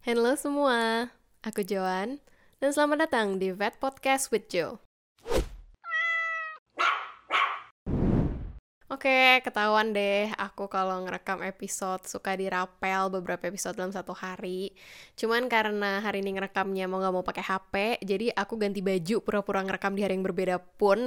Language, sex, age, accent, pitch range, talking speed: Indonesian, female, 10-29, native, 195-235 Hz, 135 wpm